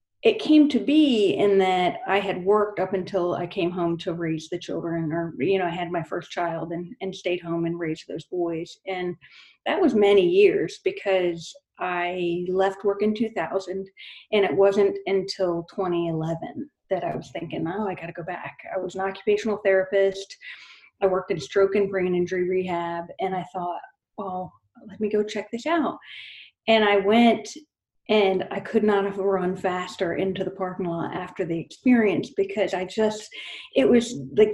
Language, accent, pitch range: English, American, 180-215 Hz